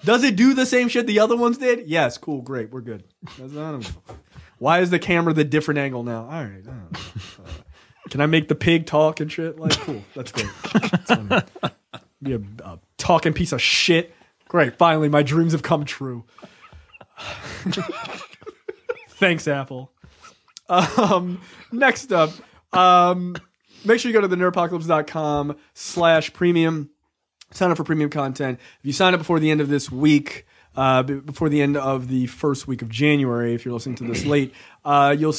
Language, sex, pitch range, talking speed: English, male, 135-170 Hz, 170 wpm